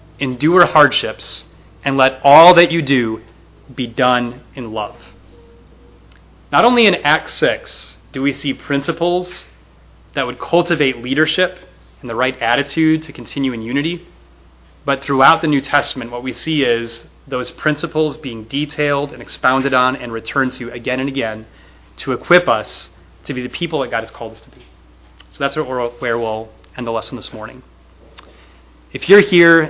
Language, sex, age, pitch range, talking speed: English, male, 30-49, 95-150 Hz, 165 wpm